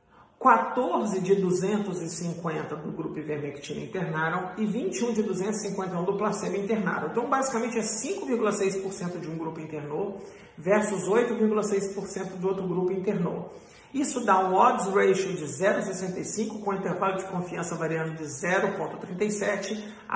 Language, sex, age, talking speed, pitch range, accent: Portuguese, male, 50-69, 125 wpm, 170-215 Hz, Brazilian